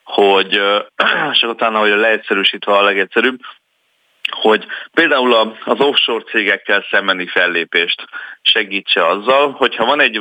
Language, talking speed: Hungarian, 120 wpm